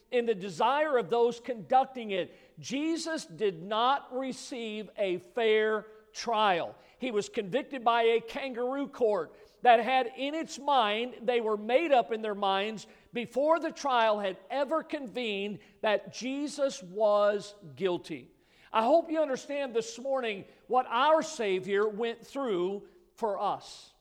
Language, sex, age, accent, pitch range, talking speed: English, male, 50-69, American, 205-270 Hz, 140 wpm